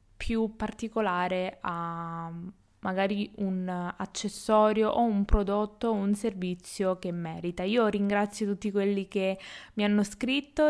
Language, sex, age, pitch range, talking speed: Italian, female, 20-39, 195-225 Hz, 125 wpm